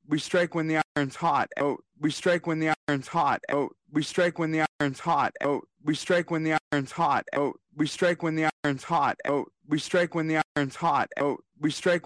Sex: male